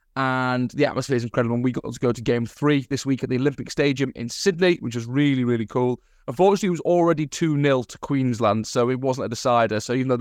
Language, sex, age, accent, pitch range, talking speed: English, male, 20-39, British, 125-155 Hz, 240 wpm